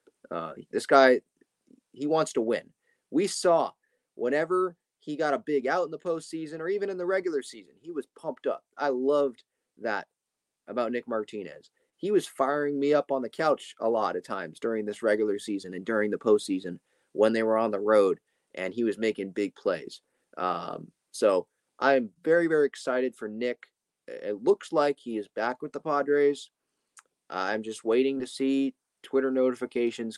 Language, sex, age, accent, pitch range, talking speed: English, male, 30-49, American, 115-145 Hz, 180 wpm